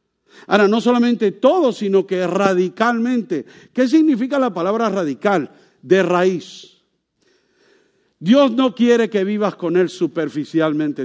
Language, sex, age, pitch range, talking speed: English, male, 50-69, 160-240 Hz, 120 wpm